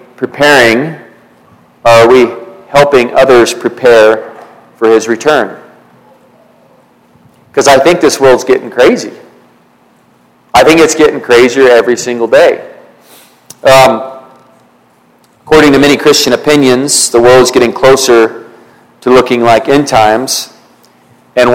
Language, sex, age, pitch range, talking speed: English, male, 40-59, 115-130 Hz, 110 wpm